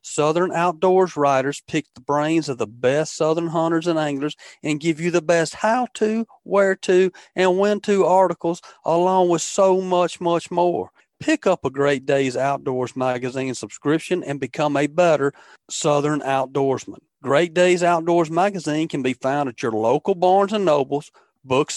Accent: American